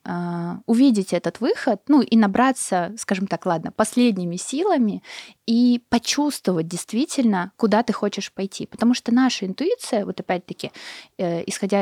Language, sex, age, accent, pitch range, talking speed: Russian, female, 20-39, native, 190-245 Hz, 125 wpm